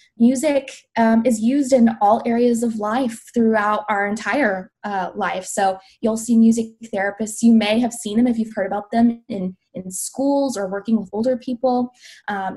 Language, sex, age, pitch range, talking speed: English, female, 20-39, 195-235 Hz, 180 wpm